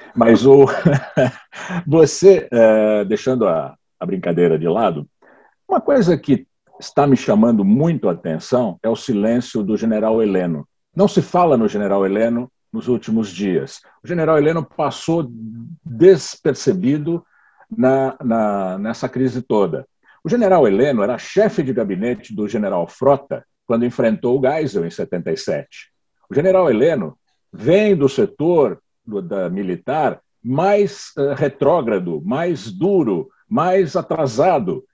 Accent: Brazilian